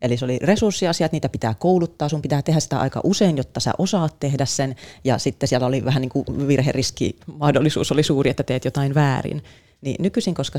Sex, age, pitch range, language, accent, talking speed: female, 30-49, 130-160 Hz, Finnish, native, 200 wpm